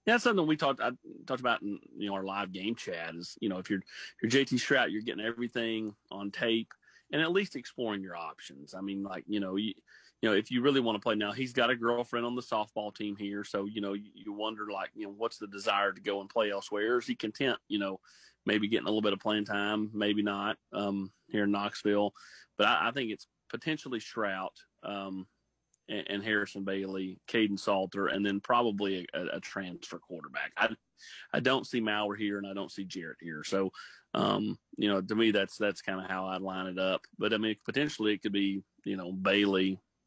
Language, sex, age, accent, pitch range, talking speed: English, male, 30-49, American, 95-110 Hz, 230 wpm